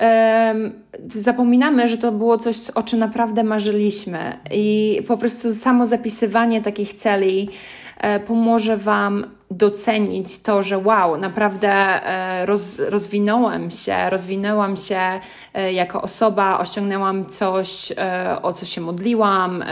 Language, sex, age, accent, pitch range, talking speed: Polish, female, 20-39, native, 195-225 Hz, 105 wpm